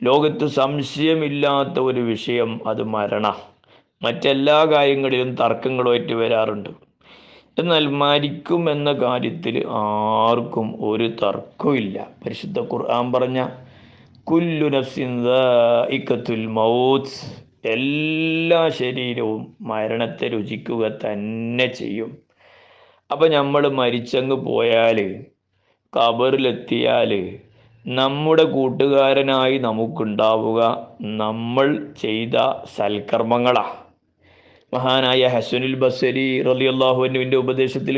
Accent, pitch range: native, 115-140 Hz